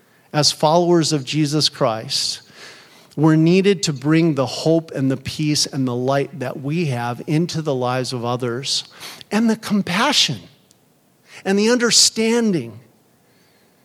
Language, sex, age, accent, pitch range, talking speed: English, male, 50-69, American, 135-190 Hz, 135 wpm